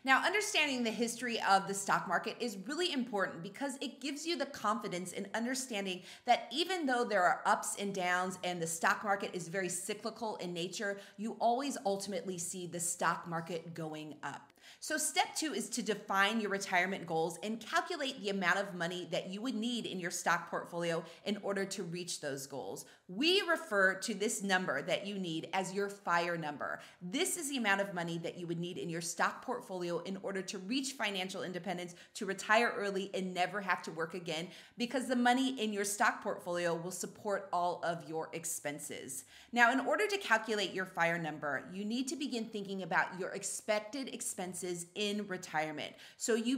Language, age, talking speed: English, 30-49, 190 wpm